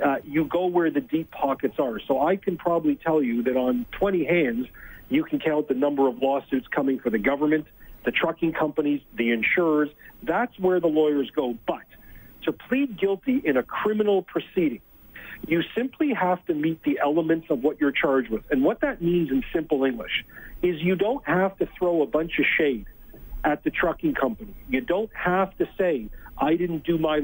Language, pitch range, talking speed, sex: English, 145-190 Hz, 195 wpm, male